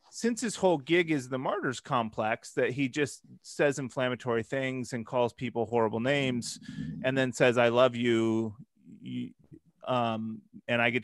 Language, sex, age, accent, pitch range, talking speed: English, male, 30-49, American, 125-150 Hz, 160 wpm